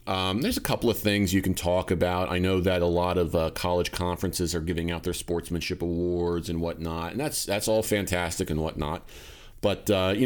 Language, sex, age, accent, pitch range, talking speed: English, male, 30-49, American, 85-120 Hz, 215 wpm